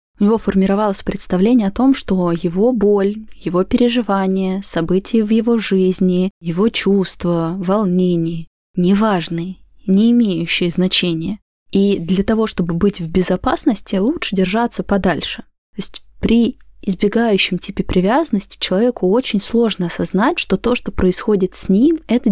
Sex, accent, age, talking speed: female, native, 20-39, 130 wpm